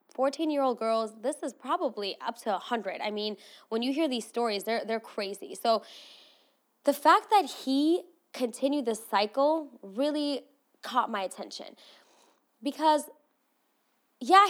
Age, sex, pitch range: 20-39, female, 215-290 Hz